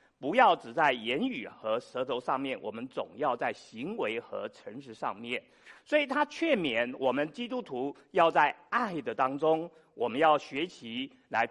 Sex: male